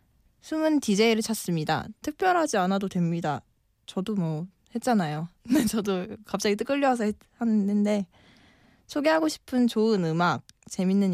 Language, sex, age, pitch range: Korean, female, 20-39, 175-240 Hz